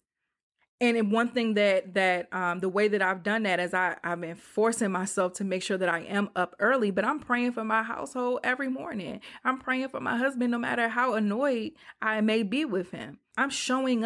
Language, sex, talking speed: English, female, 210 wpm